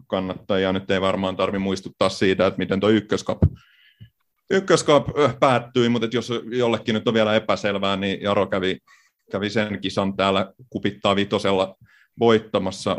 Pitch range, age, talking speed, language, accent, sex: 90-105 Hz, 30-49, 140 wpm, Finnish, native, male